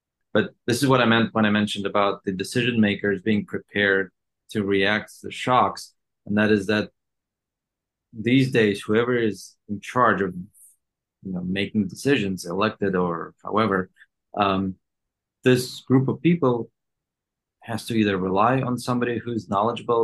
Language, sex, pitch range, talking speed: English, male, 100-115 Hz, 145 wpm